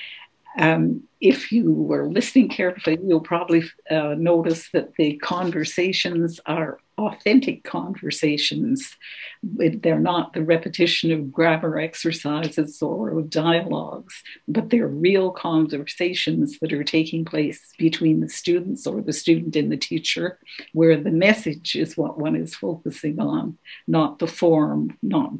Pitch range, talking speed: 155-180 Hz, 130 wpm